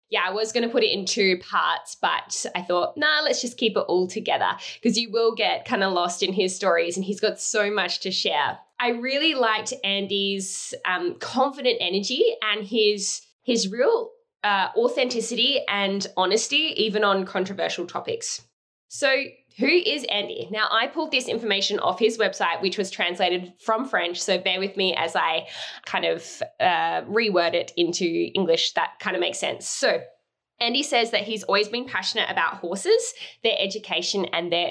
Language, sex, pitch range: English, female, 190-240 Hz